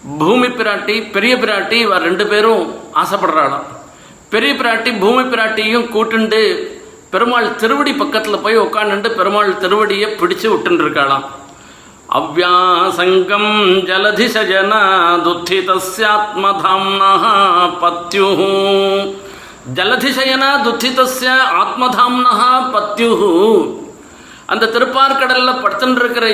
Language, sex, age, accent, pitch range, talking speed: Tamil, male, 50-69, native, 195-250 Hz, 75 wpm